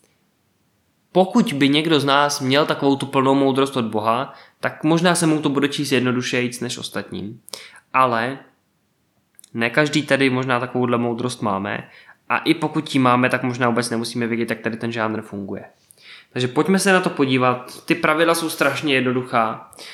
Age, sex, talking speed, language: 20-39, male, 170 wpm, Czech